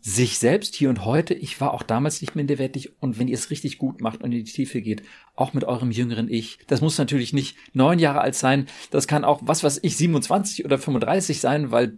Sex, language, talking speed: male, German, 235 wpm